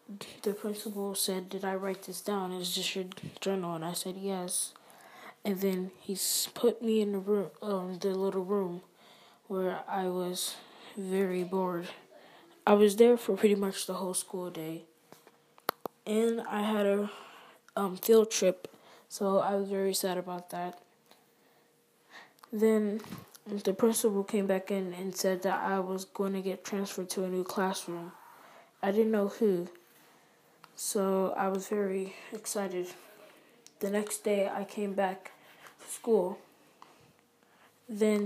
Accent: American